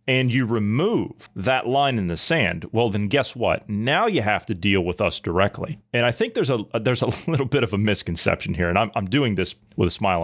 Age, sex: 30-49, male